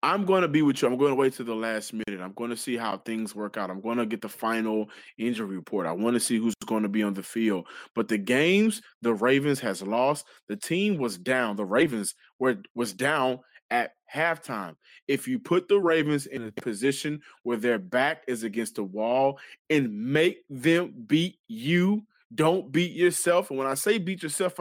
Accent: American